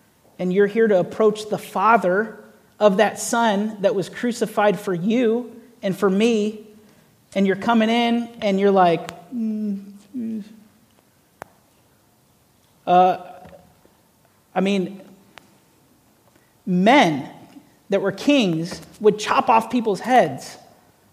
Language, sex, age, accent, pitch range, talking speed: English, male, 40-59, American, 185-230 Hz, 110 wpm